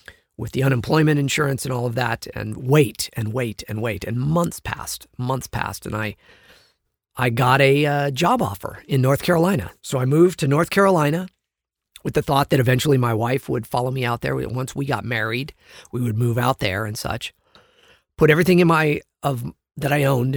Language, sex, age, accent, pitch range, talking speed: English, male, 40-59, American, 120-150 Hz, 195 wpm